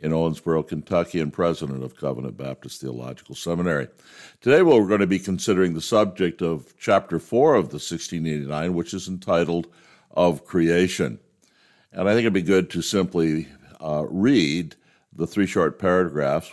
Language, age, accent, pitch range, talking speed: English, 60-79, American, 80-95 Hz, 155 wpm